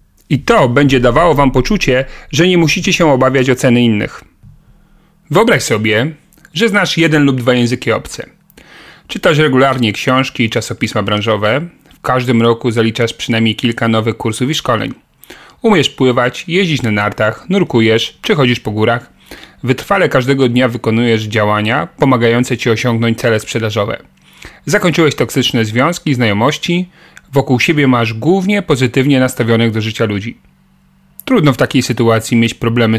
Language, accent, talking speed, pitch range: Polish, native, 140 wpm, 115-150 Hz